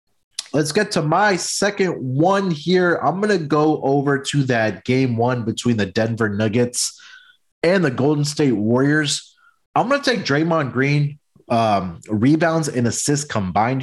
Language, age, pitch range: English, 20-39, 110-140 Hz